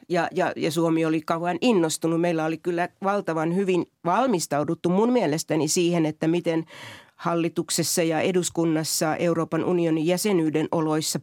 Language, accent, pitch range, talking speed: Finnish, native, 160-180 Hz, 135 wpm